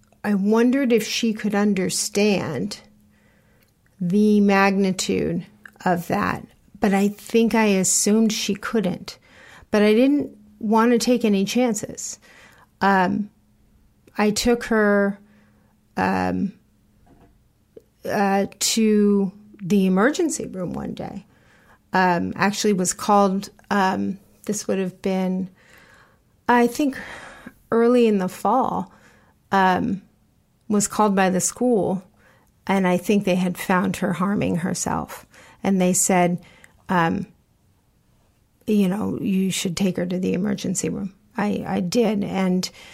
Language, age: English, 40-59